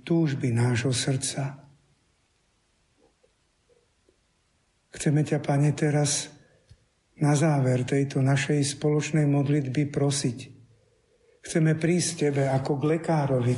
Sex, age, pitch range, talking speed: male, 60-79, 125-155 Hz, 90 wpm